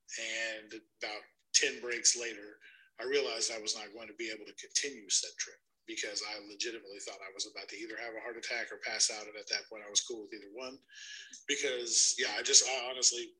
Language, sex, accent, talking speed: English, male, American, 225 wpm